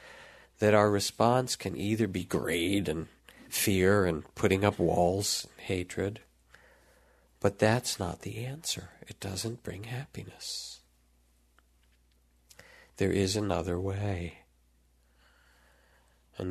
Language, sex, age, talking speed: English, male, 50-69, 105 wpm